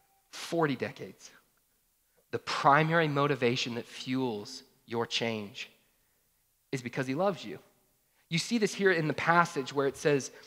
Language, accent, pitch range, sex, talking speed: English, American, 135-175 Hz, male, 140 wpm